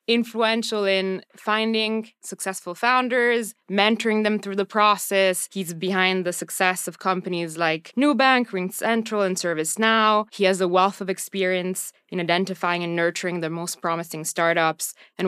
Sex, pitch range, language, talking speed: female, 165-200 Hz, Italian, 140 wpm